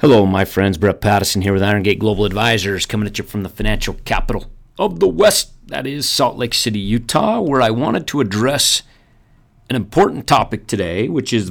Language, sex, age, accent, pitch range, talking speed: English, male, 40-59, American, 95-120 Hz, 200 wpm